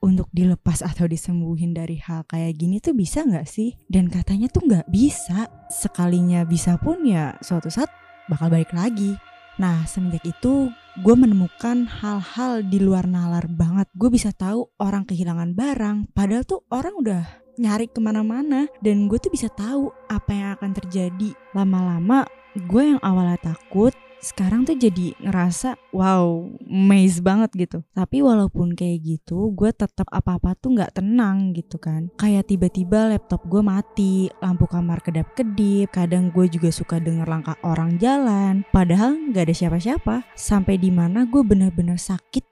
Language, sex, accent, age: Indonesian, female, native, 20-39